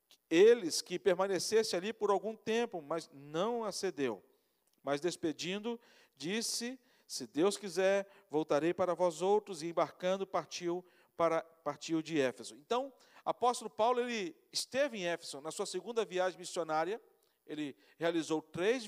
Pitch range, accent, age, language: 175-235 Hz, Brazilian, 50-69, Portuguese